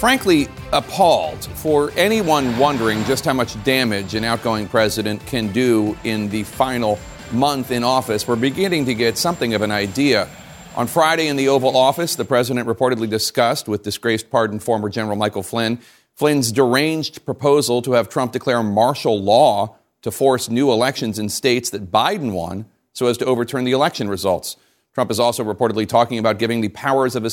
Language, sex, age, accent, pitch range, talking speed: English, male, 40-59, American, 115-145 Hz, 180 wpm